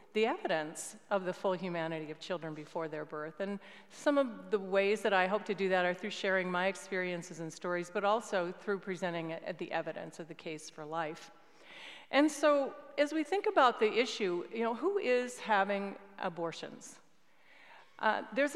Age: 40-59